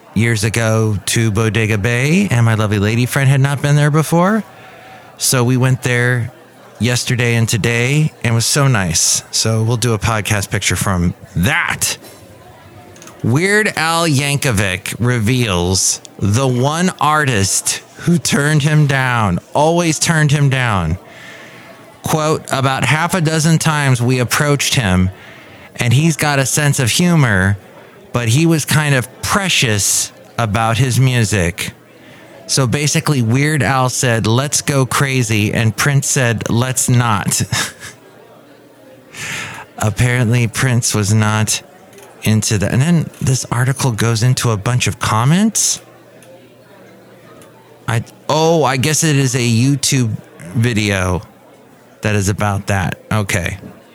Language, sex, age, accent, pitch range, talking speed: English, male, 30-49, American, 110-145 Hz, 130 wpm